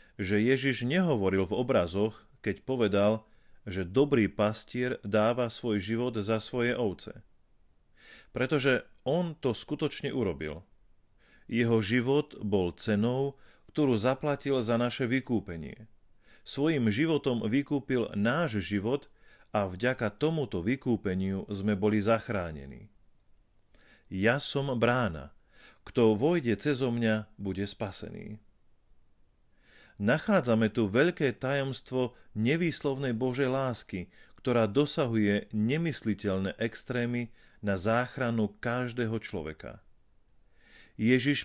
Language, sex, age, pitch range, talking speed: Slovak, male, 40-59, 105-130 Hz, 95 wpm